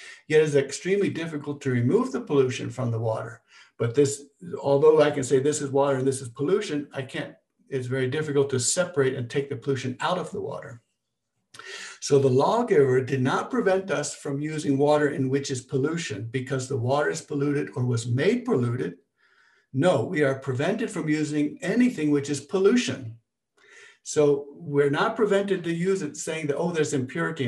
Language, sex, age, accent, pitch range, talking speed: English, male, 60-79, American, 135-165 Hz, 185 wpm